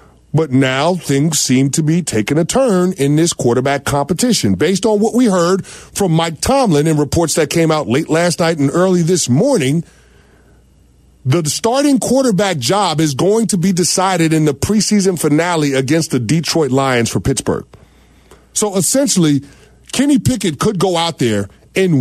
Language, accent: English, American